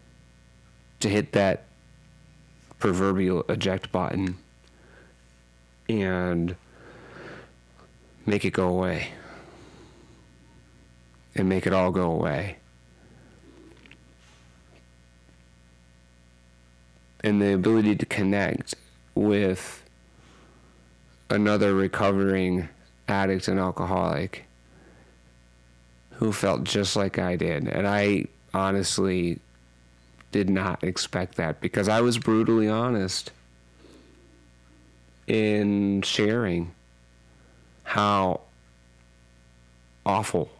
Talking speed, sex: 75 wpm, male